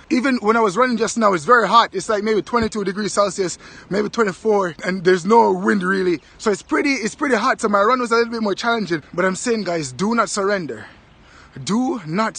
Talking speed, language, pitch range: 230 wpm, English, 195-240 Hz